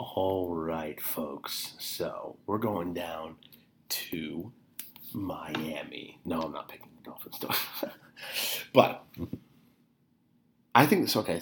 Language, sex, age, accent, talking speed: English, male, 30-49, American, 105 wpm